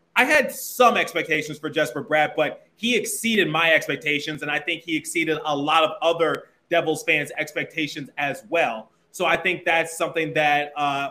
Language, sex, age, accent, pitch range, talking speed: English, male, 30-49, American, 155-190 Hz, 180 wpm